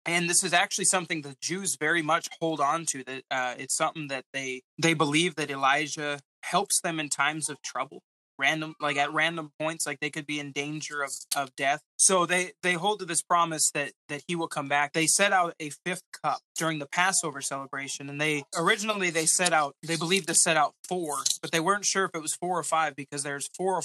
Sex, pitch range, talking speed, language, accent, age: male, 145-170 Hz, 230 wpm, English, American, 20-39